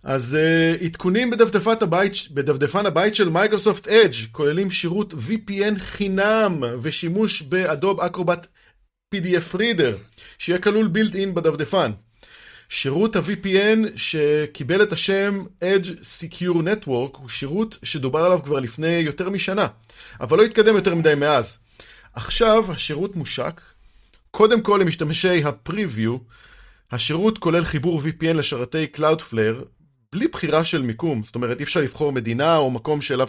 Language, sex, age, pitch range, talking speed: Hebrew, male, 30-49, 135-185 Hz, 130 wpm